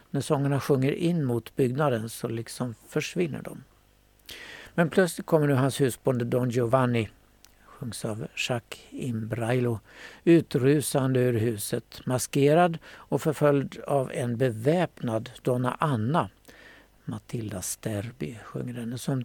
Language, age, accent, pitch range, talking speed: Swedish, 60-79, native, 120-150 Hz, 120 wpm